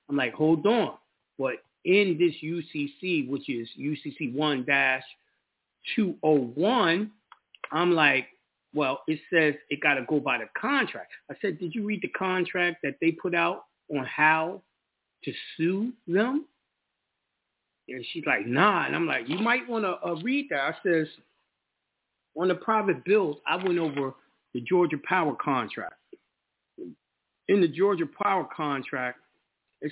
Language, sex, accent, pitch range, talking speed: English, male, American, 145-190 Hz, 145 wpm